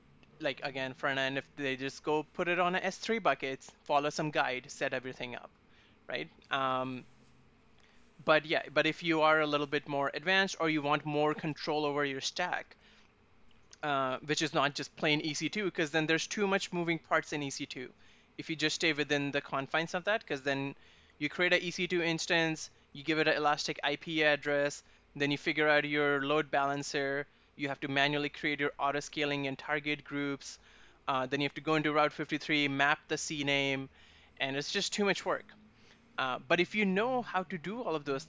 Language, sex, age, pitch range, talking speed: English, male, 20-39, 140-160 Hz, 195 wpm